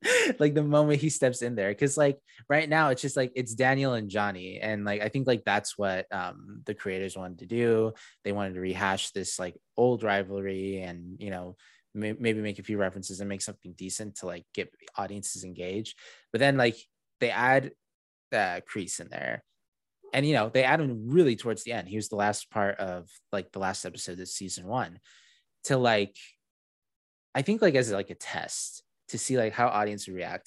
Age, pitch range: 20-39, 100-125 Hz